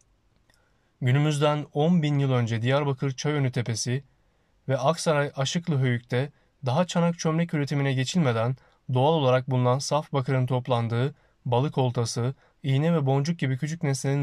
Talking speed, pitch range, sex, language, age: 130 wpm, 125-150 Hz, male, Turkish, 30-49